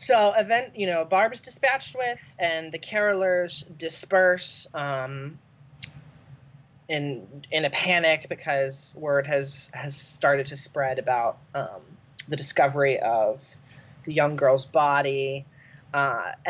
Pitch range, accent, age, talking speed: 140-165 Hz, American, 30-49, 125 wpm